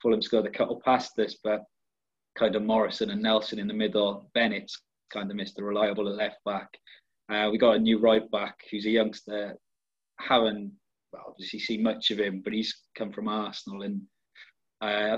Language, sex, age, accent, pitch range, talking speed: English, male, 20-39, British, 100-115 Hz, 195 wpm